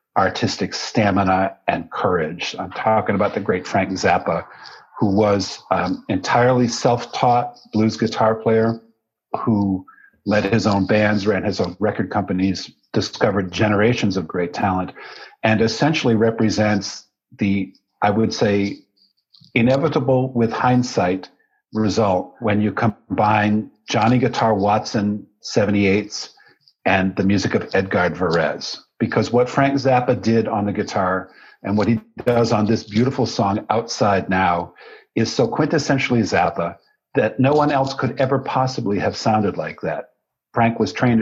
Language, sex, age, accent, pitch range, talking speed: English, male, 50-69, American, 105-125 Hz, 135 wpm